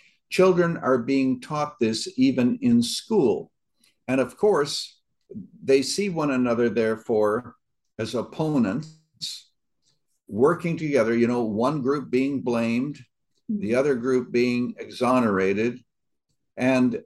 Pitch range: 110-140 Hz